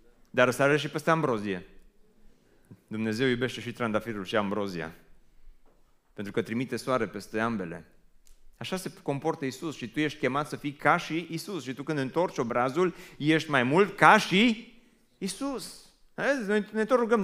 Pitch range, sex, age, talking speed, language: 130-185 Hz, male, 30-49, 160 wpm, Romanian